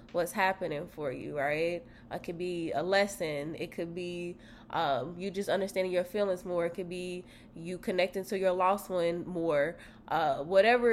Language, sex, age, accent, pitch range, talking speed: English, female, 20-39, American, 175-215 Hz, 175 wpm